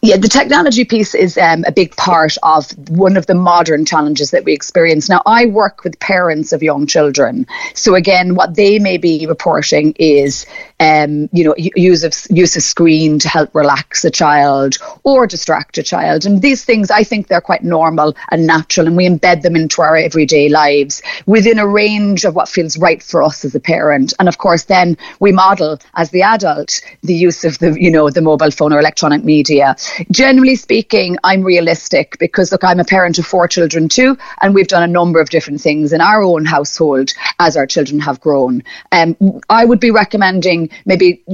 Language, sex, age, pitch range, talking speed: English, female, 30-49, 160-200 Hz, 200 wpm